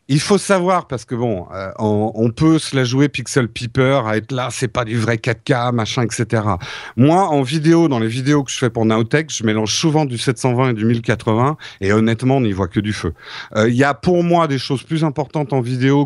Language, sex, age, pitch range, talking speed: French, male, 50-69, 110-150 Hz, 240 wpm